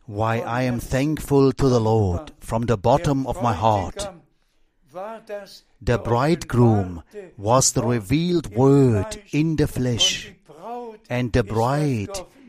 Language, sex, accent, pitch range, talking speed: English, male, German, 120-180 Hz, 120 wpm